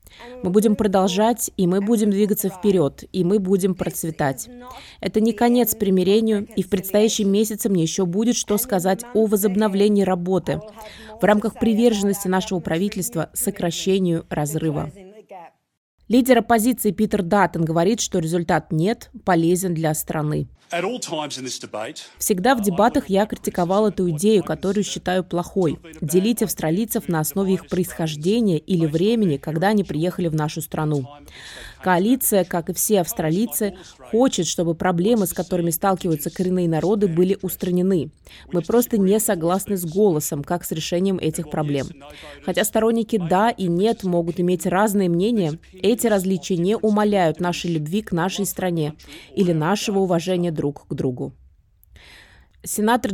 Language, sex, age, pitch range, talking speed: Russian, female, 20-39, 170-215 Hz, 135 wpm